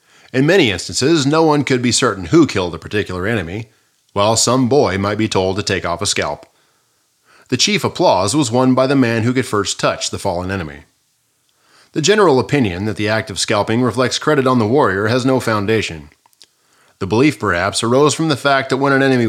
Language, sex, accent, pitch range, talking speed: English, male, American, 100-135 Hz, 205 wpm